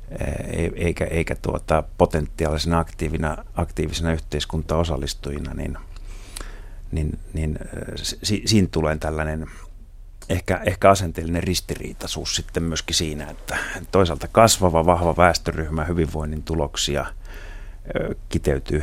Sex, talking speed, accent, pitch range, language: male, 85 wpm, native, 80-95 Hz, Finnish